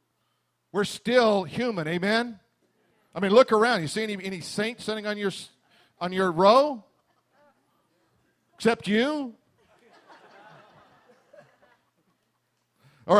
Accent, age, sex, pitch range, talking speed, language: American, 50-69, male, 160-215 Hz, 95 wpm, English